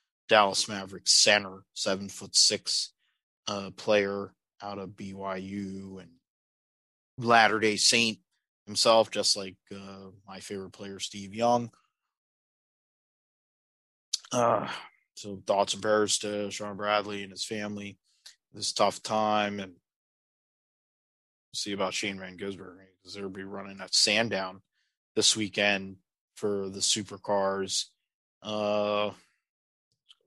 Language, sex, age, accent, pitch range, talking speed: English, male, 20-39, American, 95-110 Hz, 115 wpm